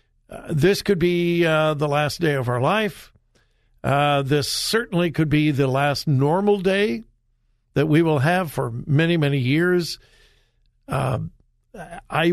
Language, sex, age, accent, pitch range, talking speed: English, male, 60-79, American, 140-205 Hz, 145 wpm